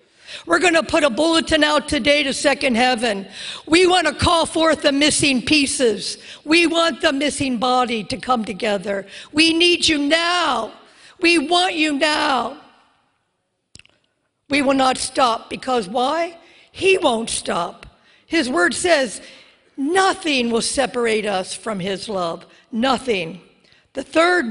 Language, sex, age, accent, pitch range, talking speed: English, female, 50-69, American, 210-300 Hz, 140 wpm